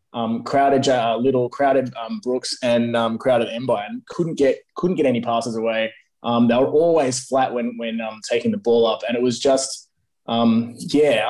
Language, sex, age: English, male, 20-39